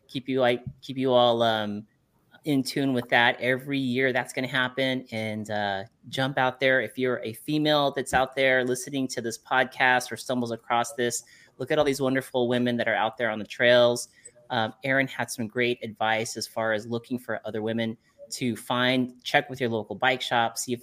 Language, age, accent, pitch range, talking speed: English, 30-49, American, 115-135 Hz, 210 wpm